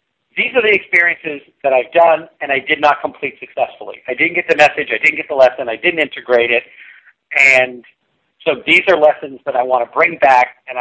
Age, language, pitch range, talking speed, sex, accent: 50-69, English, 130-160 Hz, 215 wpm, male, American